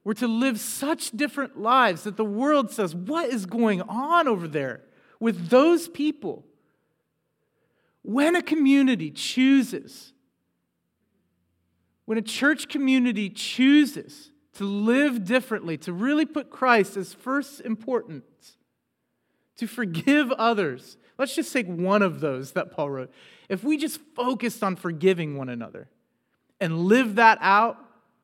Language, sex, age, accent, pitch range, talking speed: English, male, 40-59, American, 155-240 Hz, 130 wpm